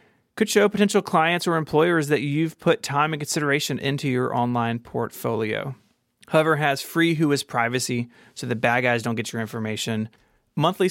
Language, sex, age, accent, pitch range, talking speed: English, male, 30-49, American, 120-155 Hz, 170 wpm